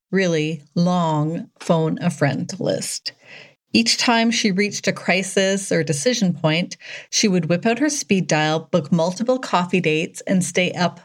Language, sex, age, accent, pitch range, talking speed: English, female, 30-49, American, 165-200 Hz, 145 wpm